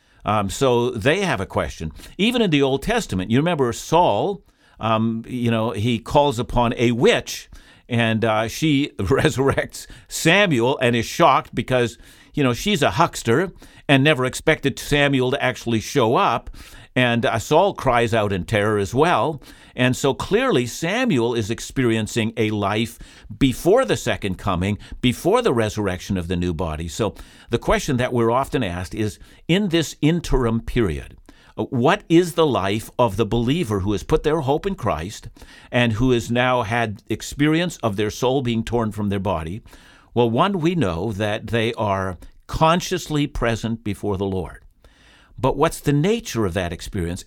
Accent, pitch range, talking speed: American, 105-140 Hz, 165 wpm